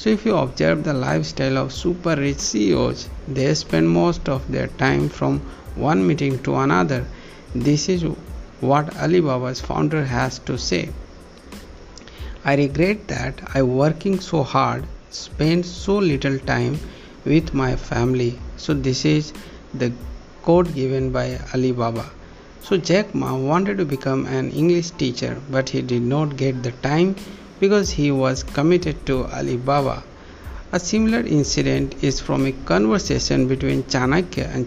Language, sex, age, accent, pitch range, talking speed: English, male, 60-79, Indian, 125-160 Hz, 145 wpm